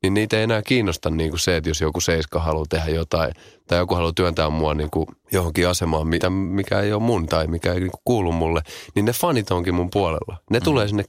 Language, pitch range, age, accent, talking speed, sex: Finnish, 85-110 Hz, 30-49, native, 205 wpm, male